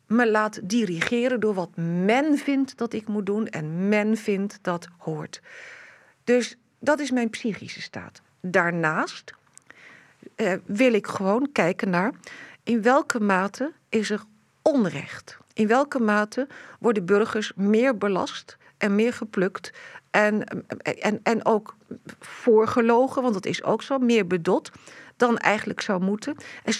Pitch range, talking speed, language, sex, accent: 205-245 Hz, 140 wpm, English, female, Dutch